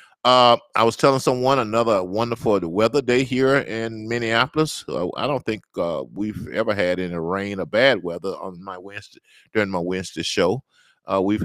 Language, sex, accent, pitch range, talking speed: English, male, American, 95-110 Hz, 180 wpm